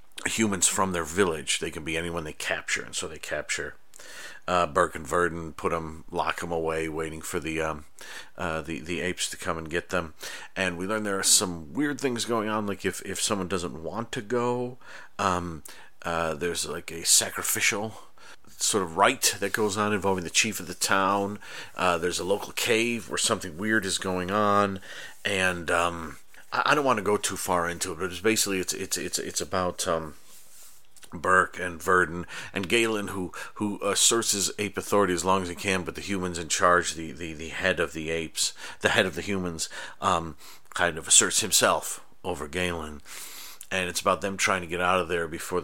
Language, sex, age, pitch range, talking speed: English, male, 40-59, 80-100 Hz, 200 wpm